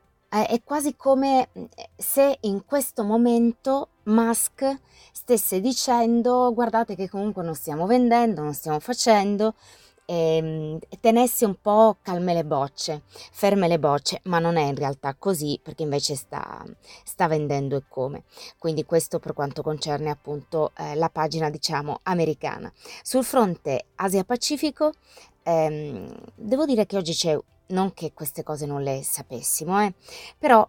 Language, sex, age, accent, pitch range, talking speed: Italian, female, 20-39, native, 155-200 Hz, 135 wpm